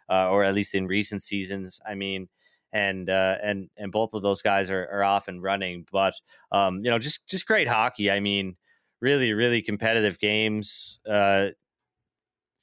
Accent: American